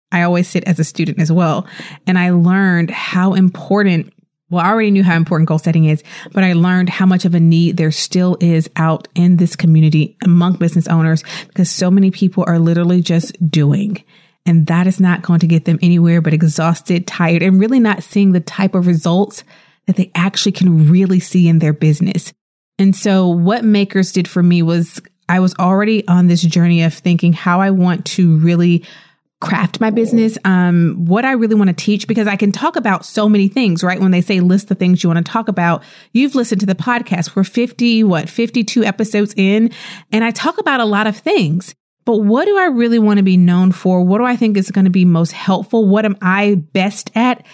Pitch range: 170-205 Hz